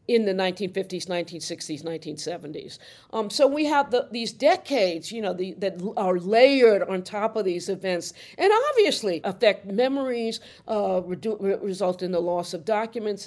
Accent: American